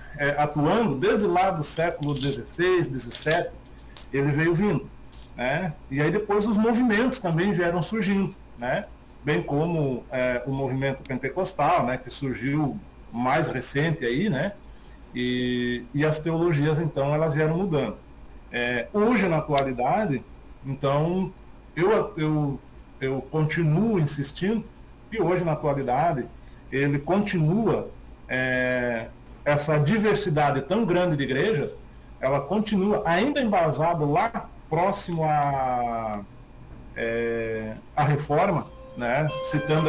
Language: Portuguese